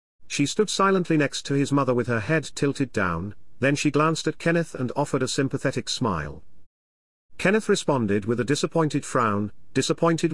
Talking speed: 170 wpm